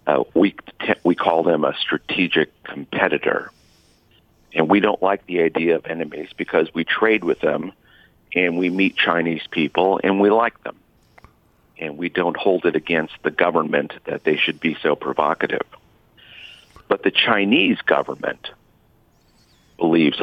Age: 50-69